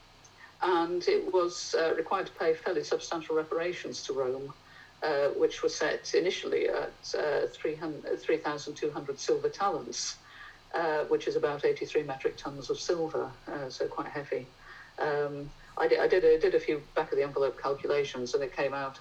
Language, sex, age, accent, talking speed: English, female, 50-69, British, 170 wpm